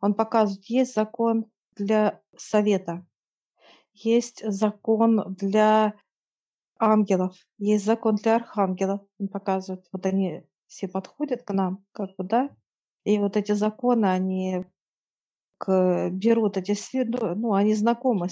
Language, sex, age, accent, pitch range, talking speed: Russian, female, 40-59, native, 200-225 Hz, 120 wpm